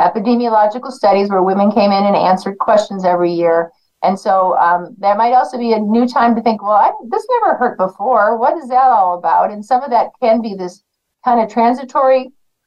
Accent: American